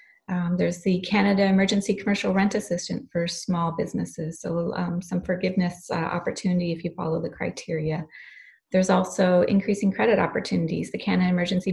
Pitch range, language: 170-200 Hz, English